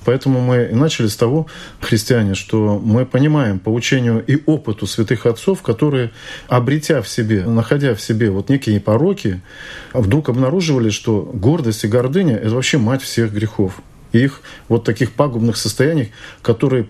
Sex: male